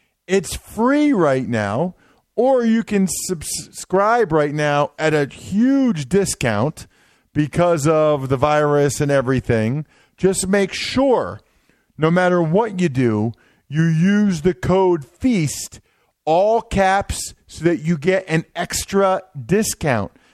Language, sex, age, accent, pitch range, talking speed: English, male, 40-59, American, 140-200 Hz, 125 wpm